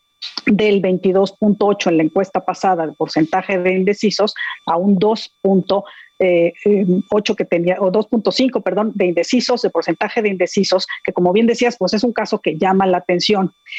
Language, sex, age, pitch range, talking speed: Spanish, female, 40-59, 180-210 Hz, 155 wpm